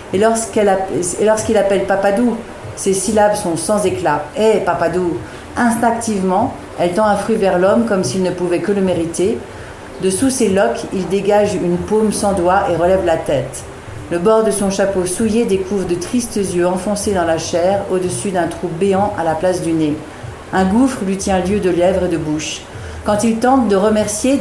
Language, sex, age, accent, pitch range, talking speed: French, female, 50-69, French, 175-210 Hz, 205 wpm